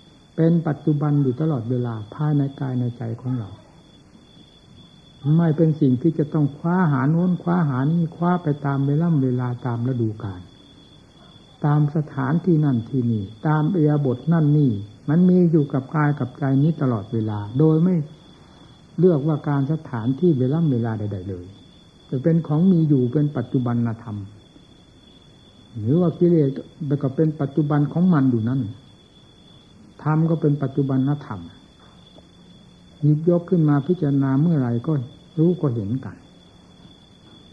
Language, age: Thai, 60-79